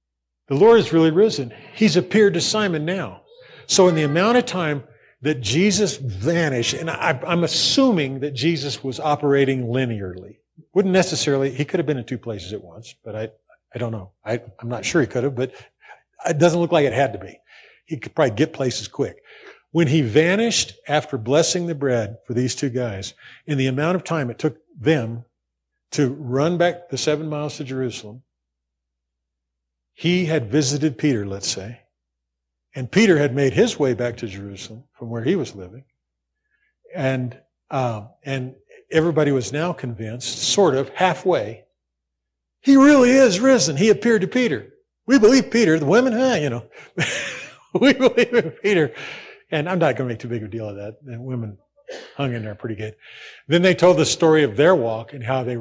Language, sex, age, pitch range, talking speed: English, male, 50-69, 110-170 Hz, 185 wpm